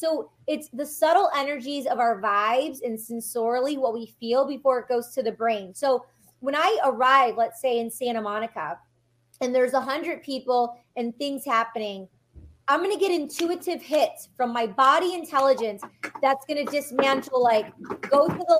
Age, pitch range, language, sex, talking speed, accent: 30-49, 230-280 Hz, English, female, 175 wpm, American